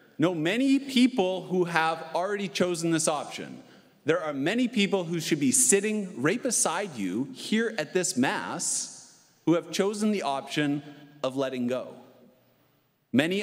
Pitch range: 150-205 Hz